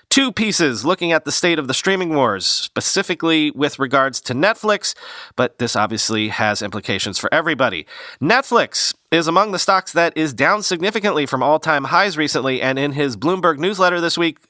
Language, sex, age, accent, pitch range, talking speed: English, male, 40-59, American, 135-195 Hz, 175 wpm